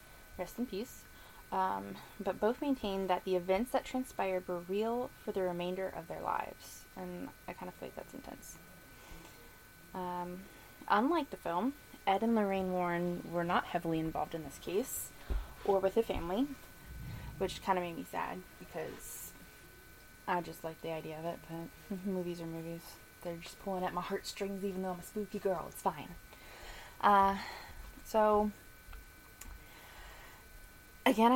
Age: 20-39